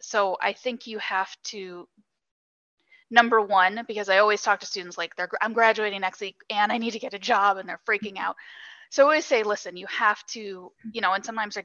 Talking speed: 225 wpm